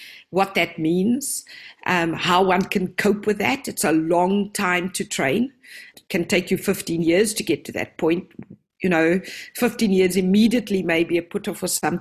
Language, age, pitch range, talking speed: English, 50-69, 175-210 Hz, 190 wpm